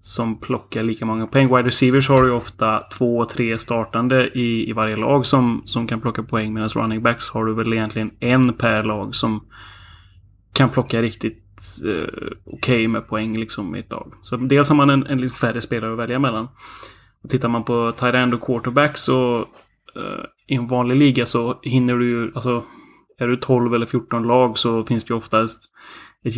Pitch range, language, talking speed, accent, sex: 110-130 Hz, Swedish, 200 wpm, native, male